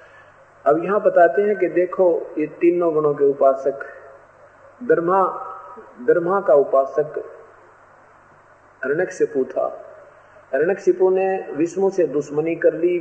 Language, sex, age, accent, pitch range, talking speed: Hindi, male, 50-69, native, 135-195 Hz, 115 wpm